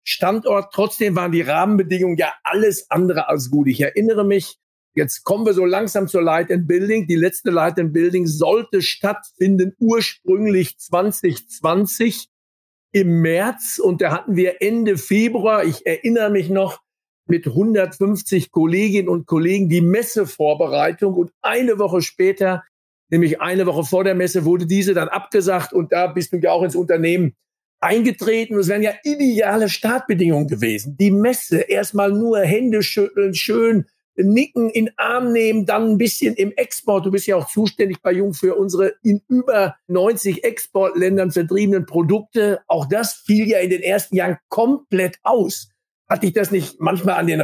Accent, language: German, German